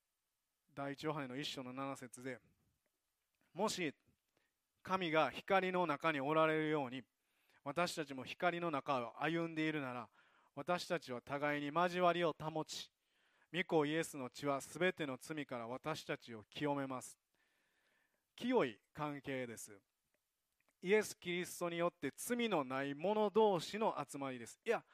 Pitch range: 135-170 Hz